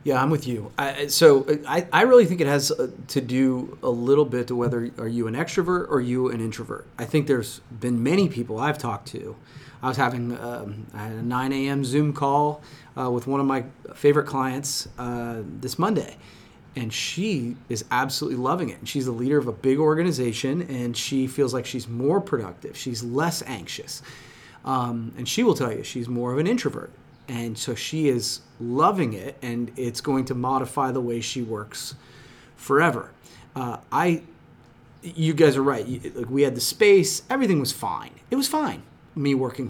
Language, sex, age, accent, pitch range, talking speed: English, male, 30-49, American, 120-150 Hz, 185 wpm